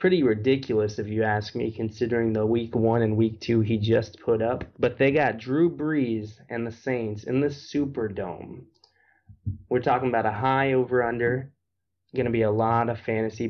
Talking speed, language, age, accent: 180 wpm, English, 20-39, American